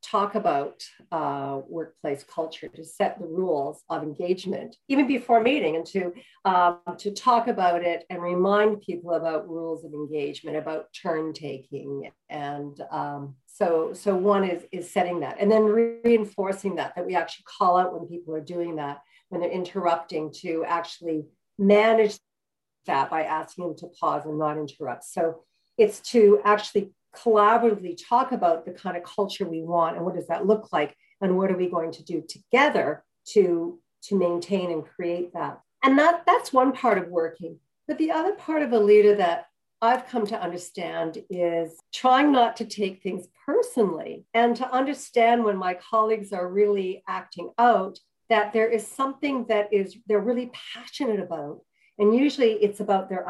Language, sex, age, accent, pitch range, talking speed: English, female, 50-69, American, 165-225 Hz, 170 wpm